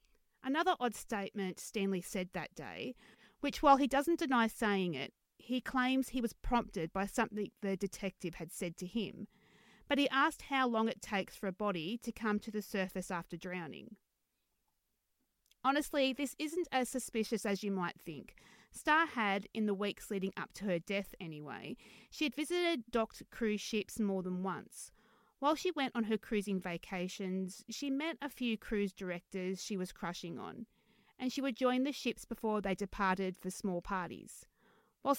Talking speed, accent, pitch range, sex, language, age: 175 wpm, Australian, 190-250 Hz, female, English, 30-49